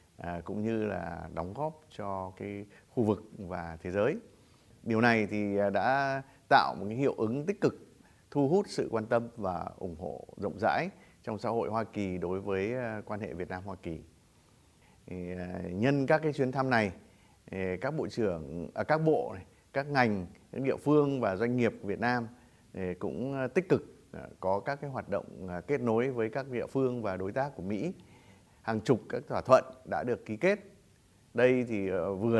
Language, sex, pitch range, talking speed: Vietnamese, male, 95-125 Hz, 185 wpm